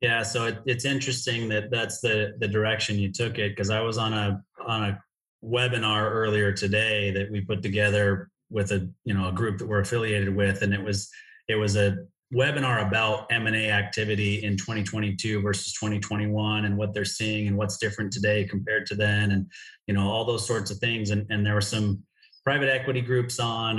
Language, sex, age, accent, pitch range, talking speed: English, male, 30-49, American, 105-125 Hz, 200 wpm